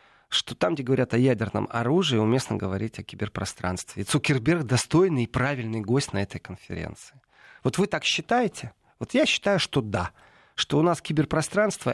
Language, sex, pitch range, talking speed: Russian, male, 110-150 Hz, 165 wpm